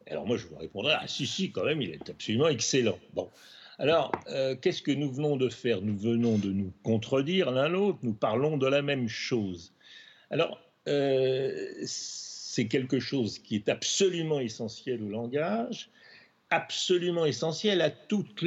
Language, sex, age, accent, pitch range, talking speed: French, male, 60-79, French, 110-150 Hz, 165 wpm